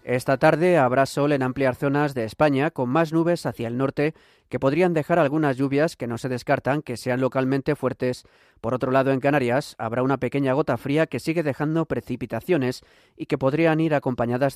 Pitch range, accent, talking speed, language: 125-150 Hz, Spanish, 195 wpm, Spanish